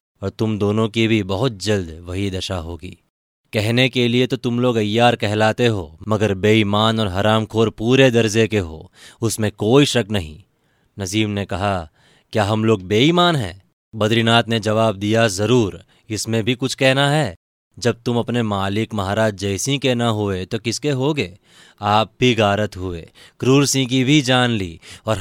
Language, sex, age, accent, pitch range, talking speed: Hindi, male, 20-39, native, 100-120 Hz, 175 wpm